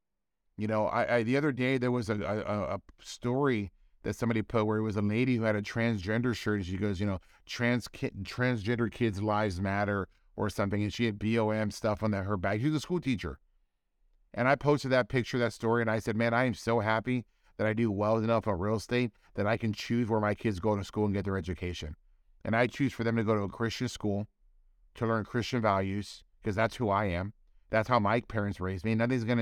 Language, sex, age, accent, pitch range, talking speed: English, male, 30-49, American, 100-125 Hz, 240 wpm